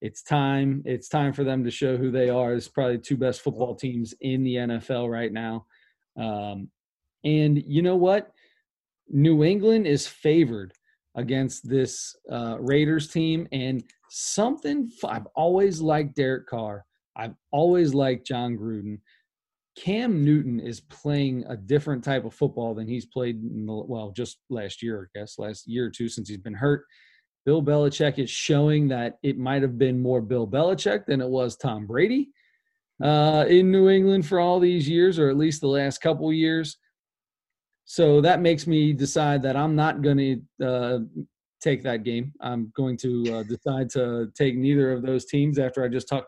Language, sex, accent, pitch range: English, male, American, 125-155 Hz